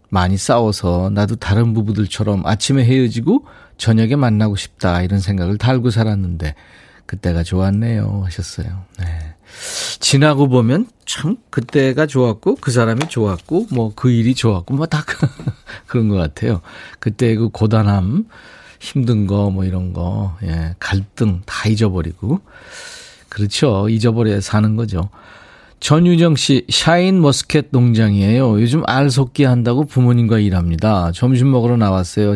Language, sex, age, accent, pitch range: Korean, male, 40-59, native, 95-130 Hz